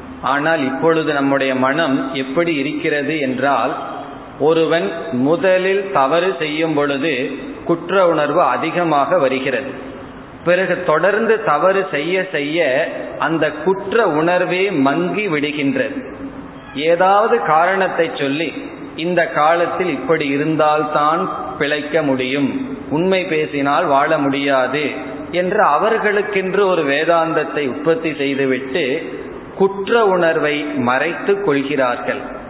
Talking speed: 90 wpm